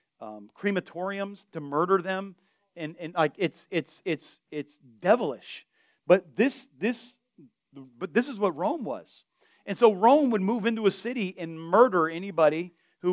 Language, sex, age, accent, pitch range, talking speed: English, male, 40-59, American, 180-240 Hz, 155 wpm